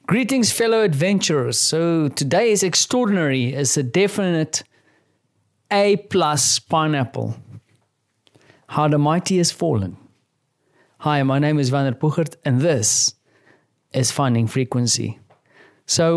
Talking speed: 115 wpm